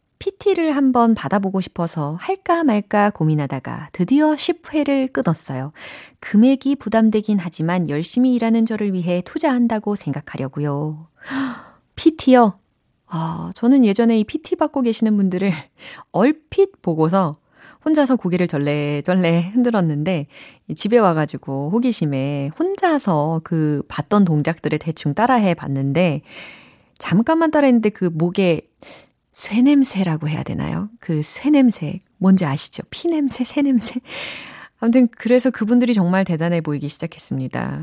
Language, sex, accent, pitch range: Korean, female, native, 155-250 Hz